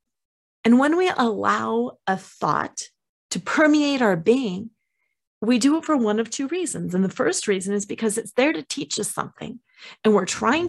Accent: American